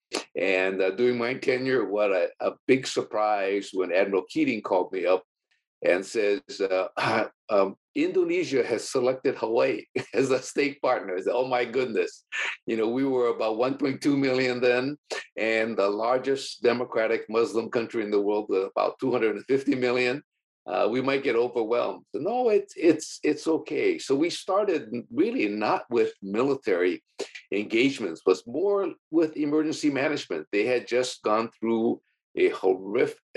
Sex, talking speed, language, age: male, 150 wpm, English, 60-79